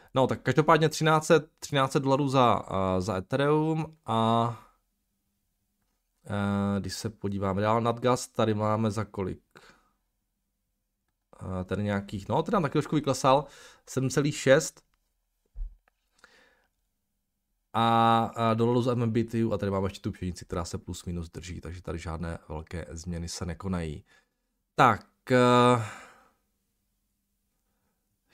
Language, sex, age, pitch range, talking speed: Czech, male, 20-39, 95-125 Hz, 125 wpm